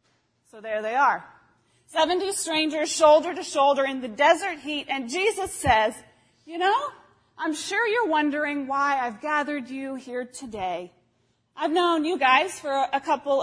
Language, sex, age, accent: English, female, 30-49, American